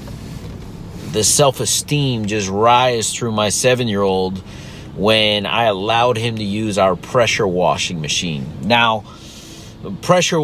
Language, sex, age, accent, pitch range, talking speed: English, male, 30-49, American, 100-120 Hz, 120 wpm